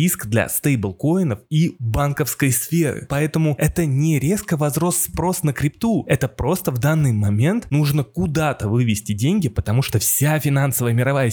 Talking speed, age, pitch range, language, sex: 150 wpm, 20-39, 125-160 Hz, Russian, male